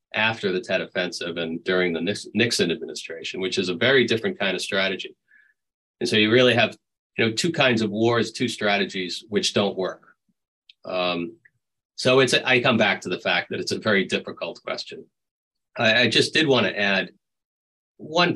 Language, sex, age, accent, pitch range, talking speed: English, male, 40-59, American, 90-120 Hz, 185 wpm